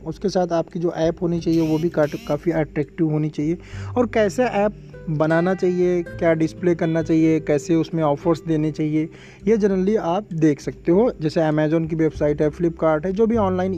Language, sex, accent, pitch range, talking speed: Hindi, male, native, 160-200 Hz, 185 wpm